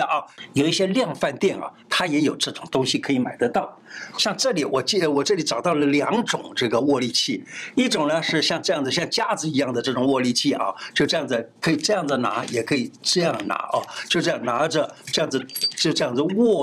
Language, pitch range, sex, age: Chinese, 140-180 Hz, male, 60-79